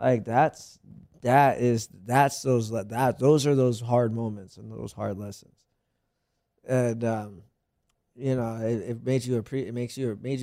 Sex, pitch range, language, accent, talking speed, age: male, 110-130 Hz, English, American, 165 wpm, 20-39